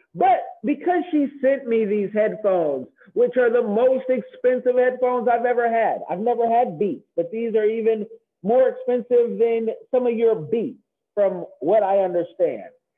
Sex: male